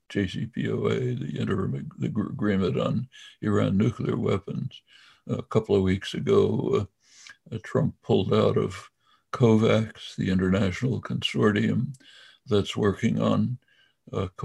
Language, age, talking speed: English, 60-79, 110 wpm